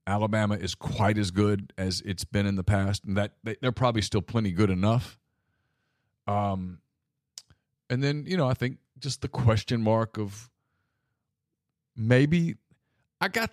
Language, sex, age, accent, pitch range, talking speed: English, male, 40-59, American, 95-115 Hz, 150 wpm